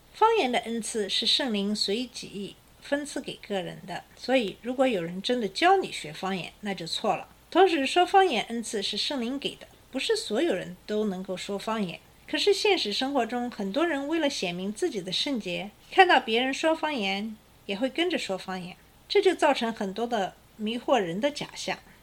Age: 50-69